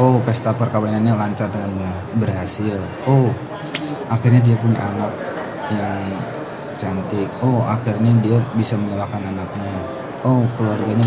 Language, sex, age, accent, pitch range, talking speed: Indonesian, male, 20-39, native, 110-130 Hz, 115 wpm